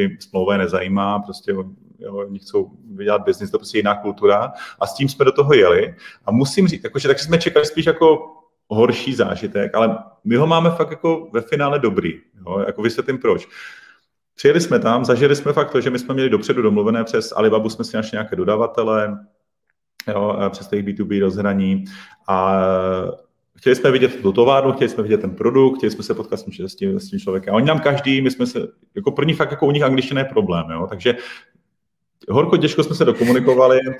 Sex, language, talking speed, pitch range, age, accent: male, Czech, 195 wpm, 110-155 Hz, 30-49, native